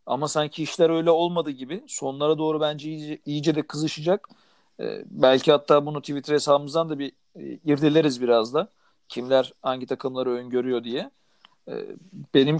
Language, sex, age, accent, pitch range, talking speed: Turkish, male, 40-59, native, 135-160 Hz, 150 wpm